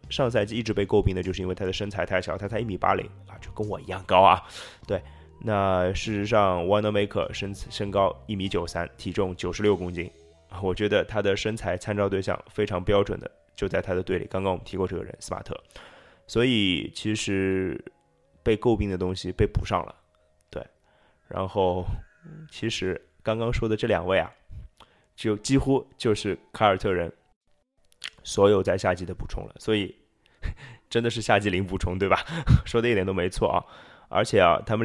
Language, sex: Chinese, male